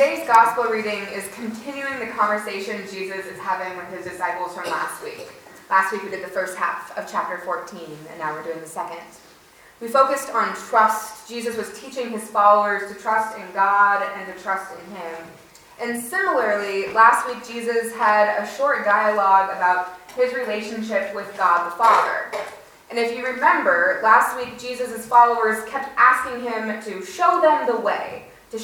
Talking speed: 175 wpm